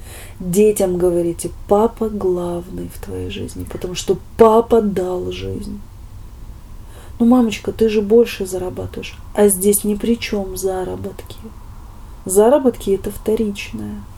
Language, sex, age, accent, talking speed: Russian, female, 20-39, native, 115 wpm